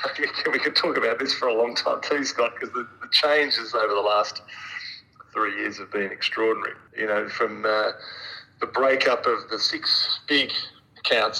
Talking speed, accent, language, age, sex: 175 wpm, Australian, English, 30-49, male